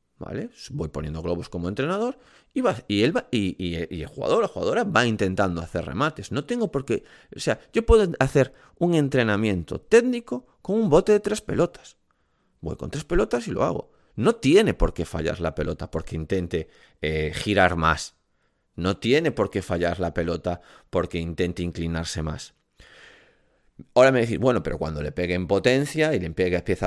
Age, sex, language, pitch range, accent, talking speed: 30-49, male, Spanish, 85-140 Hz, Spanish, 170 wpm